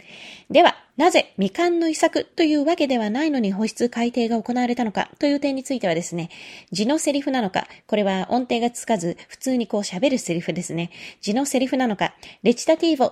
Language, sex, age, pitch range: Japanese, female, 20-39, 200-270 Hz